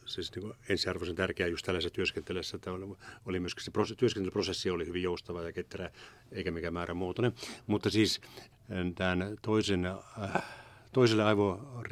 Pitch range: 90-105 Hz